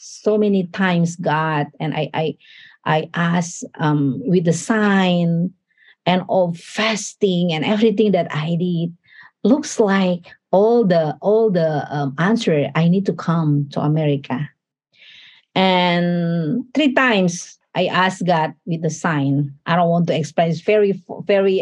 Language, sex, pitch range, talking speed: English, female, 165-220 Hz, 140 wpm